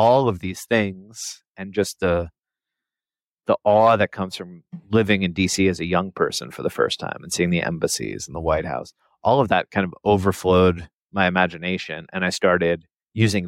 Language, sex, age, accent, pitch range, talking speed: English, male, 30-49, American, 85-105 Hz, 190 wpm